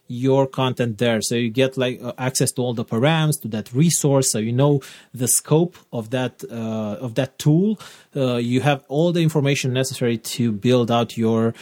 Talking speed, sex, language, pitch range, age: 190 wpm, male, English, 125-145 Hz, 30-49